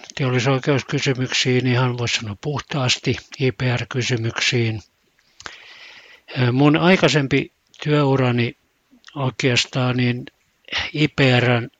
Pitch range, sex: 120-145 Hz, male